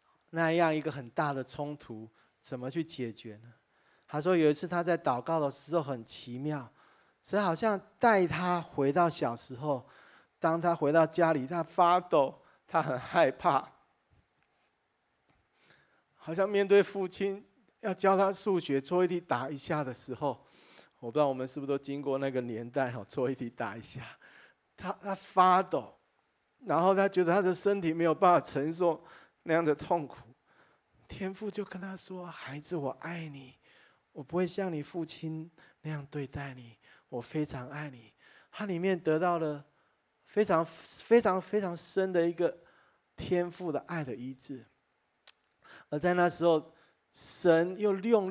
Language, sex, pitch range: Chinese, male, 145-195 Hz